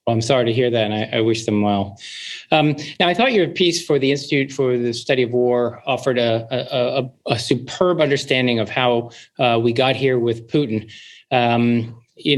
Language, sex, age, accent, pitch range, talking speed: English, male, 40-59, American, 120-150 Hz, 210 wpm